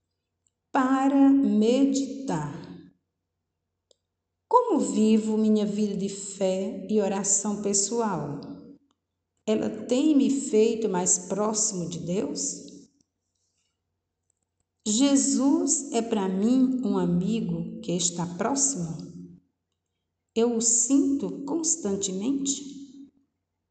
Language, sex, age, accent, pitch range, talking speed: Portuguese, female, 50-69, Brazilian, 170-240 Hz, 80 wpm